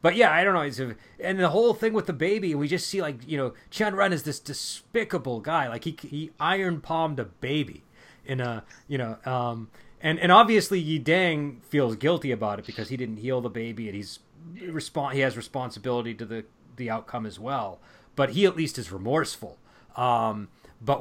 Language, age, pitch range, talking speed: English, 30-49, 110-145 Hz, 195 wpm